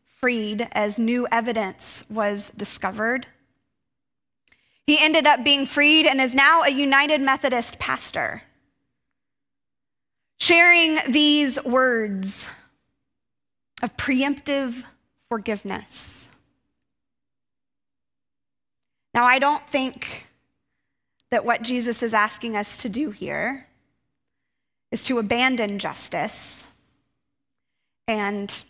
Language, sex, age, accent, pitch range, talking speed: English, female, 20-39, American, 235-300 Hz, 90 wpm